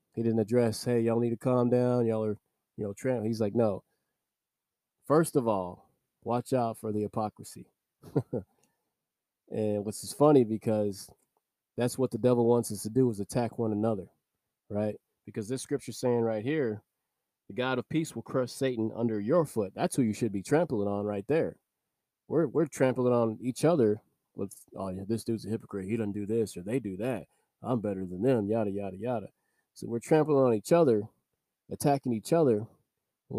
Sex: male